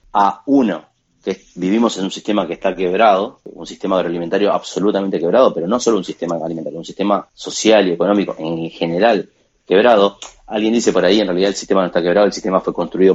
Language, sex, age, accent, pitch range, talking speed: Spanish, male, 30-49, Argentinian, 90-115 Hz, 200 wpm